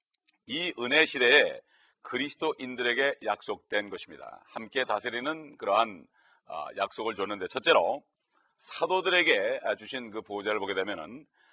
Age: 40-59